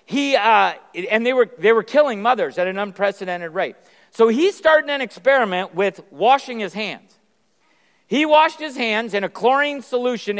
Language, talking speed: English, 175 wpm